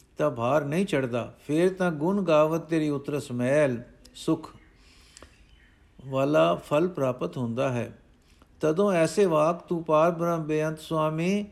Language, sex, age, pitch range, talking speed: Punjabi, male, 60-79, 130-175 Hz, 130 wpm